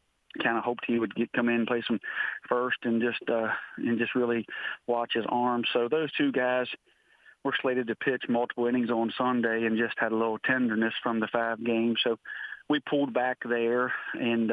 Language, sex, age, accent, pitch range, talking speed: English, male, 40-59, American, 110-120 Hz, 200 wpm